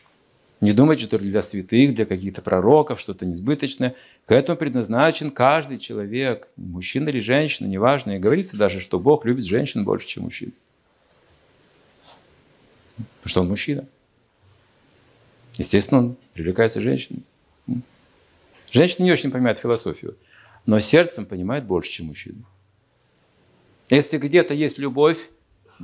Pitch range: 90-130 Hz